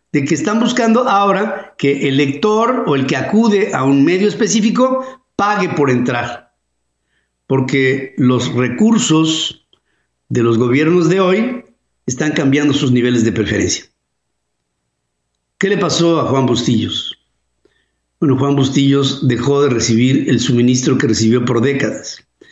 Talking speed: 135 wpm